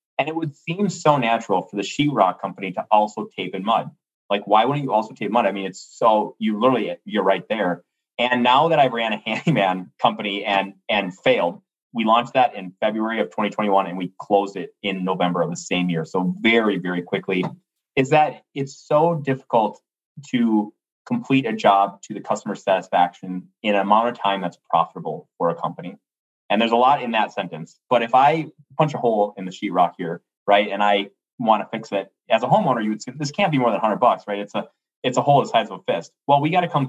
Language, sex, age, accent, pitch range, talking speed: English, male, 30-49, American, 95-135 Hz, 225 wpm